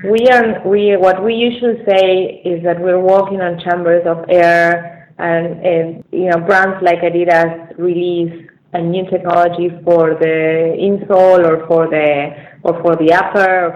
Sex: female